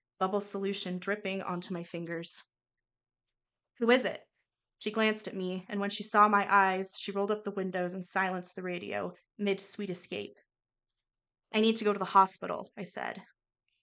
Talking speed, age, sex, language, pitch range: 170 wpm, 20-39, female, English, 175-205 Hz